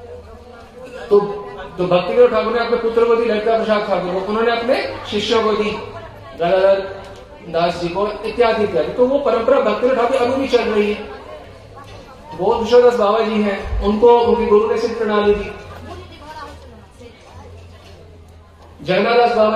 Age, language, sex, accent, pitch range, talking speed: 40-59, Hindi, male, native, 205-250 Hz, 60 wpm